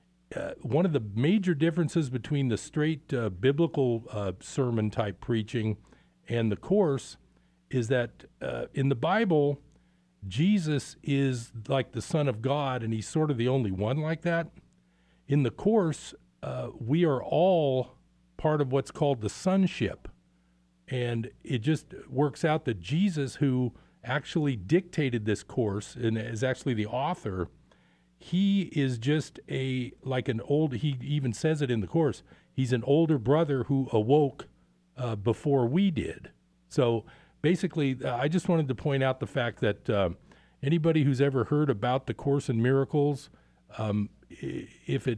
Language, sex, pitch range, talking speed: English, male, 110-150 Hz, 155 wpm